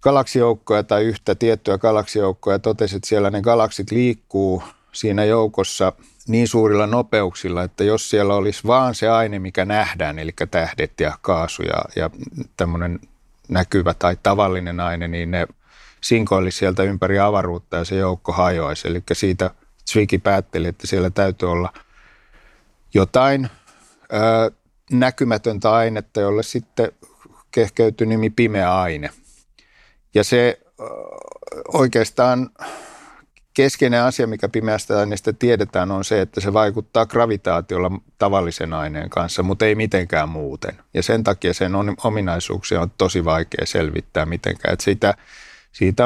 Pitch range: 90-110 Hz